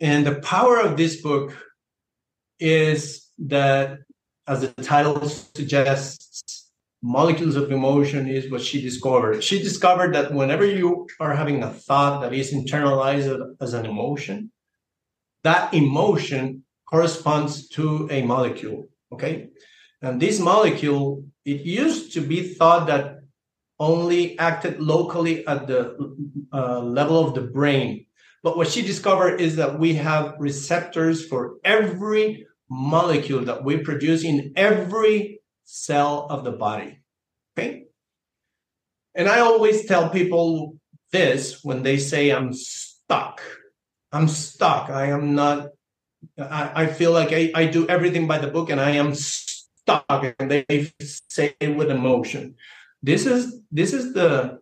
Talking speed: 135 wpm